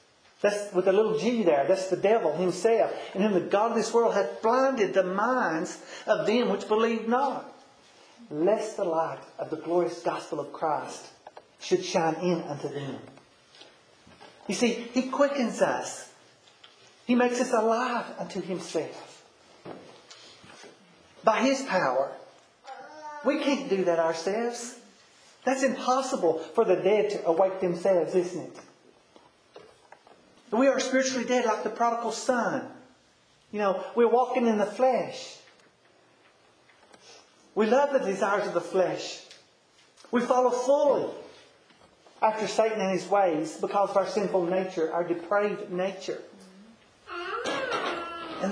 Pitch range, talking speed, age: 180-245 Hz, 135 wpm, 40-59